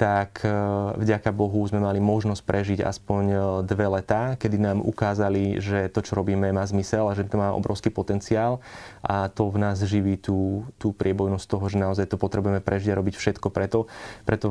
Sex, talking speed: male, 180 wpm